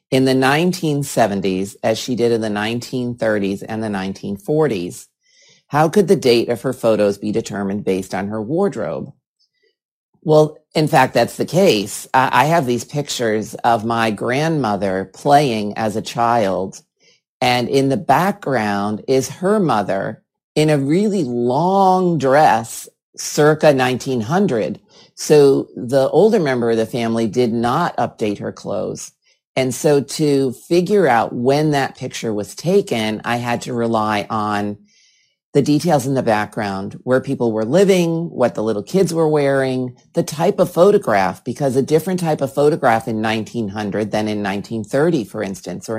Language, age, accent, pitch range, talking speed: English, 40-59, American, 110-150 Hz, 150 wpm